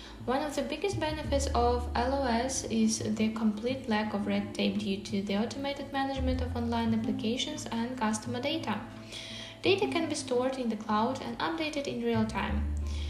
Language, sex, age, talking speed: English, female, 10-29, 165 wpm